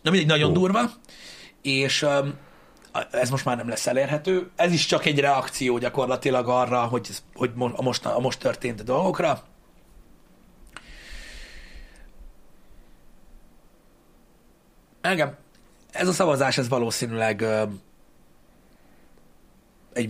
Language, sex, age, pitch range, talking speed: Hungarian, male, 30-49, 120-150 Hz, 100 wpm